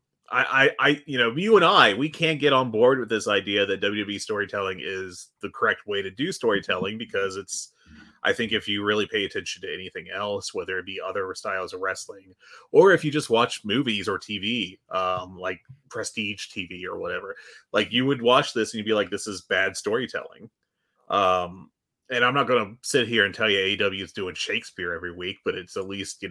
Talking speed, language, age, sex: 210 wpm, English, 30-49, male